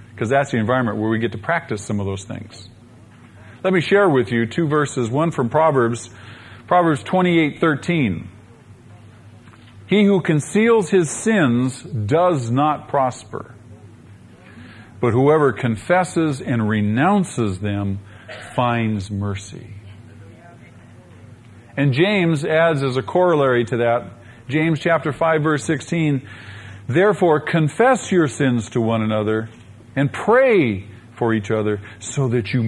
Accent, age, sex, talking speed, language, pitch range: American, 40-59, male, 130 wpm, English, 110-165 Hz